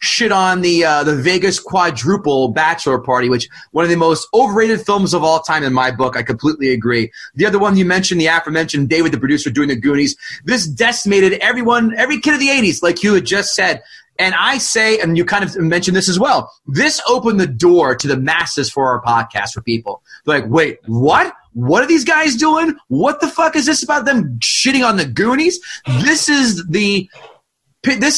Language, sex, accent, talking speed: English, male, American, 205 wpm